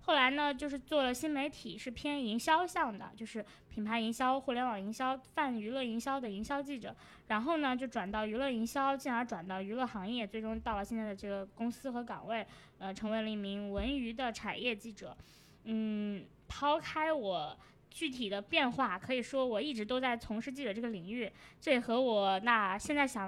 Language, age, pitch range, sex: Chinese, 20-39, 215-265 Hz, female